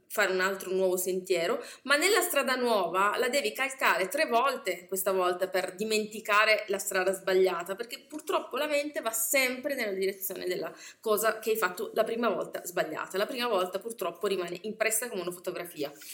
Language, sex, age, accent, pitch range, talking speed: Italian, female, 20-39, native, 185-245 Hz, 180 wpm